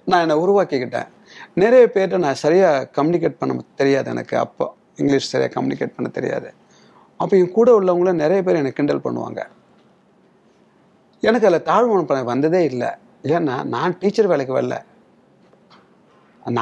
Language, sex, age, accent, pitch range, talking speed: Tamil, male, 30-49, native, 135-195 Hz, 135 wpm